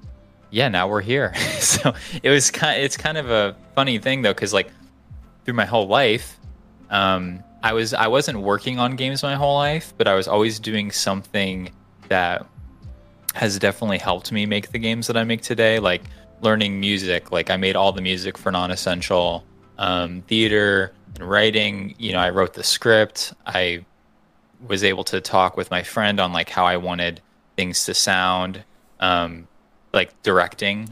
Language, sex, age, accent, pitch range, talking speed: Spanish, male, 20-39, American, 90-115 Hz, 175 wpm